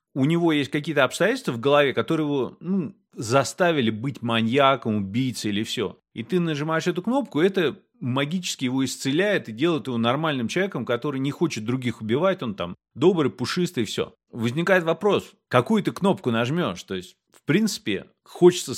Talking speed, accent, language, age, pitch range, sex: 165 wpm, native, Russian, 30-49, 125-180 Hz, male